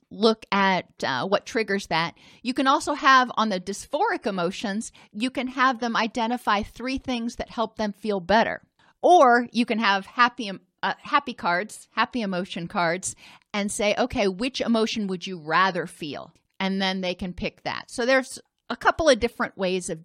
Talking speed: 180 wpm